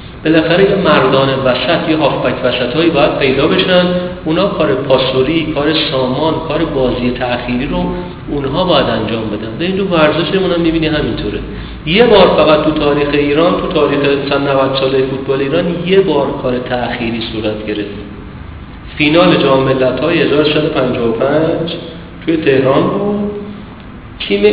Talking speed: 130 wpm